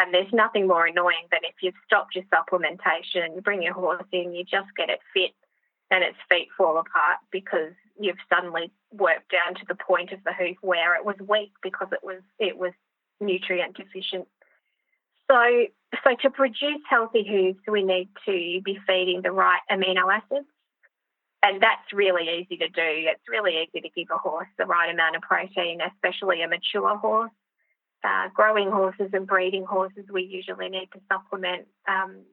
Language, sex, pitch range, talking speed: English, female, 180-205 Hz, 180 wpm